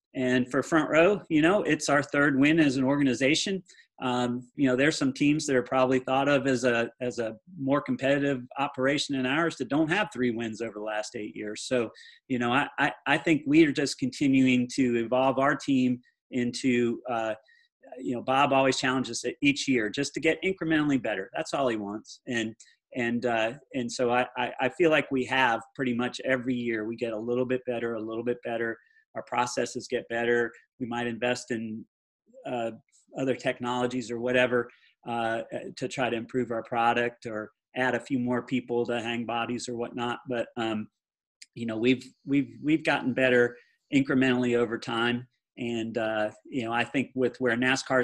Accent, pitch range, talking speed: American, 120-140 Hz, 190 wpm